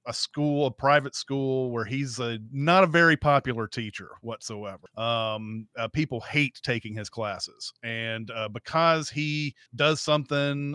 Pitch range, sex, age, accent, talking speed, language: 120-150 Hz, male, 30-49, American, 150 wpm, English